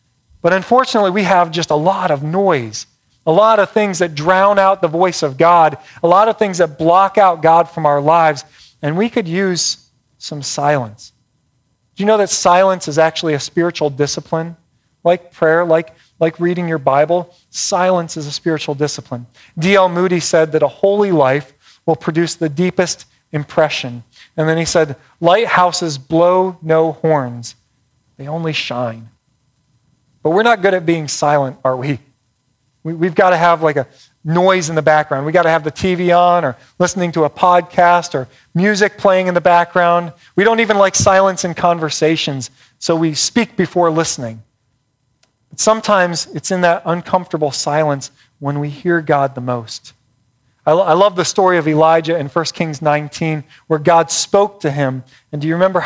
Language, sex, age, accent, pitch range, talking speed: English, male, 40-59, American, 140-180 Hz, 175 wpm